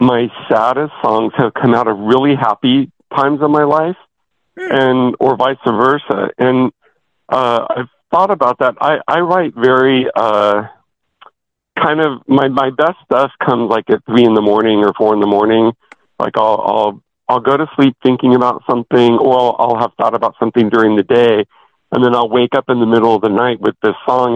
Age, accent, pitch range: 50-69, American, 115-135 Hz